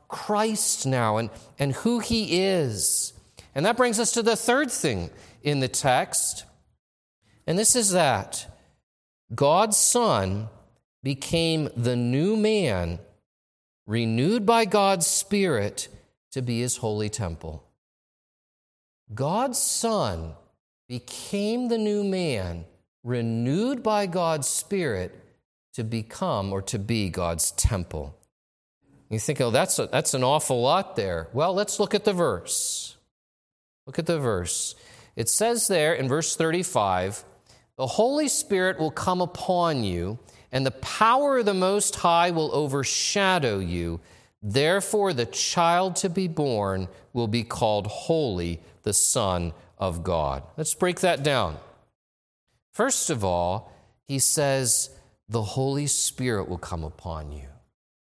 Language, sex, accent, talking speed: English, male, American, 130 wpm